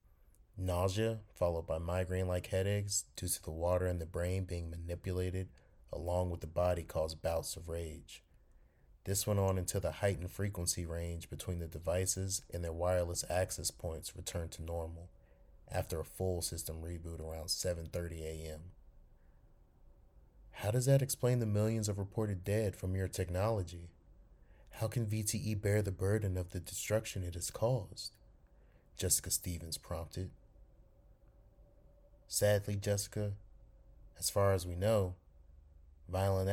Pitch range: 85-100 Hz